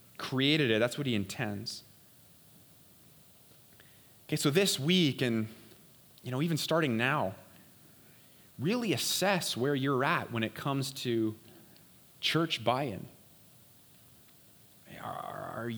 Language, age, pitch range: English, 30-49, 115-155 Hz